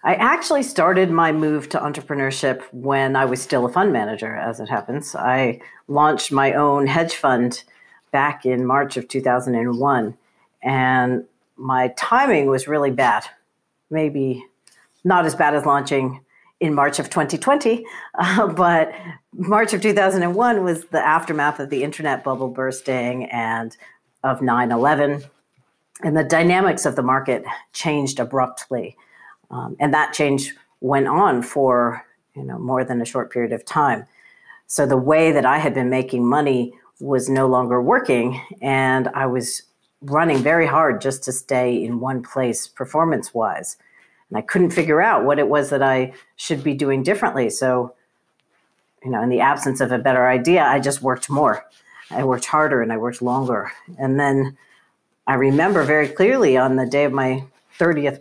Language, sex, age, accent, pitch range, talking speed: English, female, 50-69, American, 130-150 Hz, 165 wpm